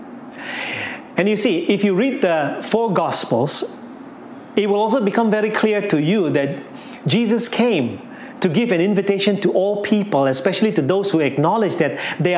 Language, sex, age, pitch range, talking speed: English, male, 30-49, 180-265 Hz, 165 wpm